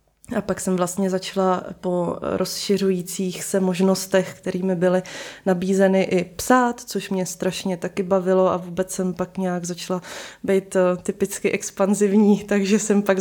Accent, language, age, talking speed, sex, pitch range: native, Czech, 20-39, 140 wpm, female, 185-210 Hz